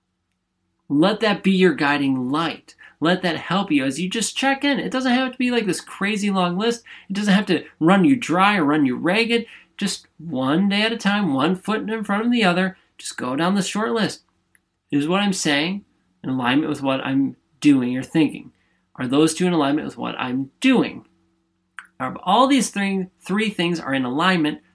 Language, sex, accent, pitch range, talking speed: English, male, American, 130-195 Hz, 205 wpm